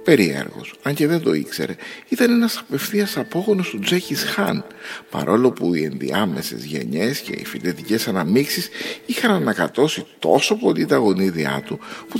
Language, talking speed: Greek, 150 wpm